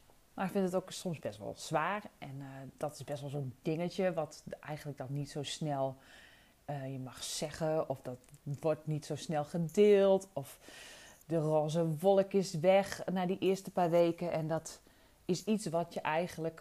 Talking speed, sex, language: 190 wpm, female, Dutch